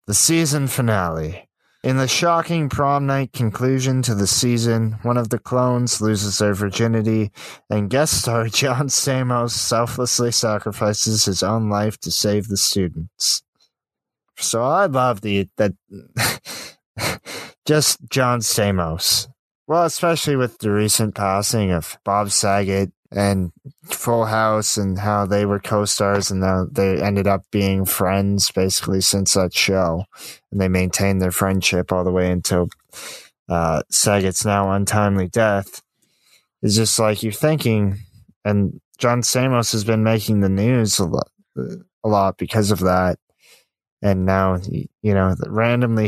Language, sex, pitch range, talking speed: English, male, 95-120 Hz, 140 wpm